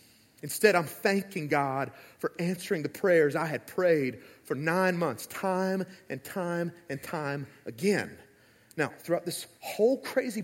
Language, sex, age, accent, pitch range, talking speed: English, male, 30-49, American, 150-220 Hz, 145 wpm